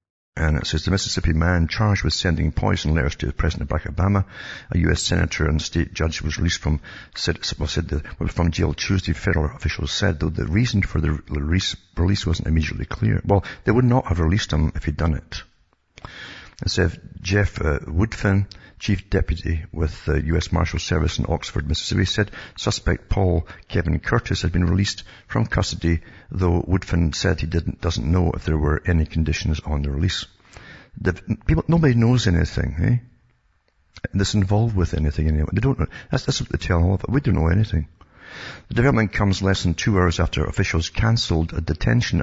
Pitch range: 80-100 Hz